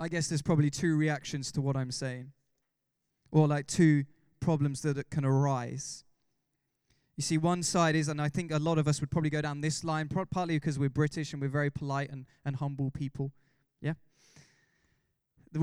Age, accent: 20-39, British